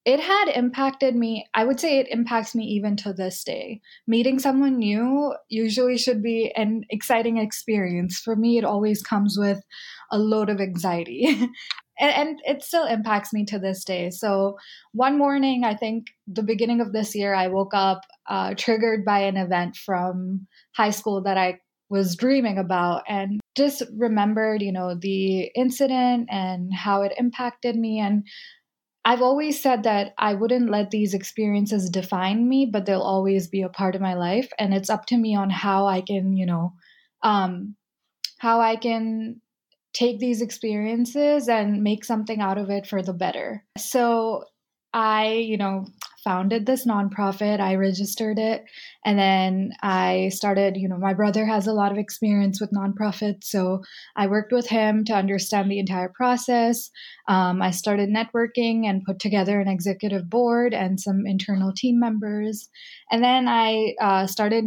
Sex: female